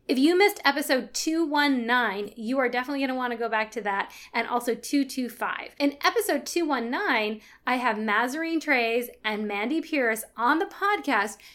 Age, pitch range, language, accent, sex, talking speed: 20-39, 220-310 Hz, English, American, female, 165 wpm